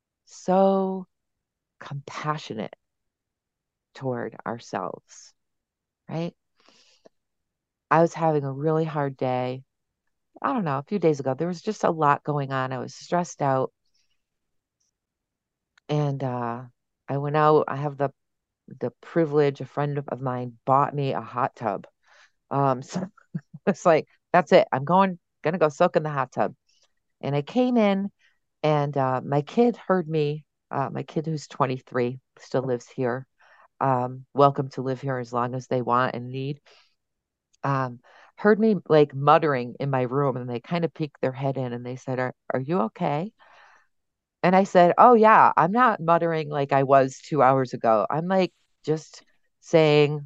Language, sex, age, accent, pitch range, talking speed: English, female, 40-59, American, 130-165 Hz, 160 wpm